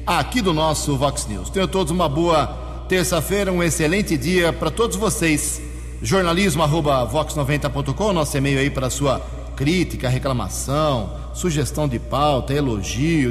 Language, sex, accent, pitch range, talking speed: English, male, Brazilian, 125-165 Hz, 135 wpm